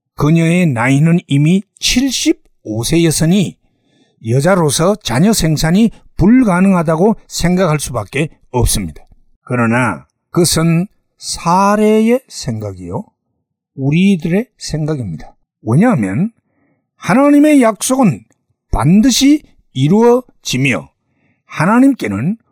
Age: 60-79